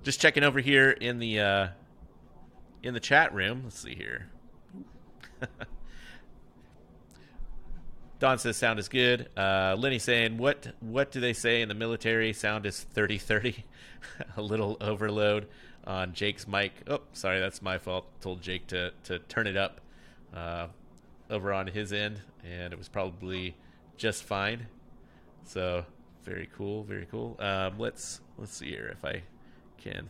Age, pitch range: 30-49, 90-110 Hz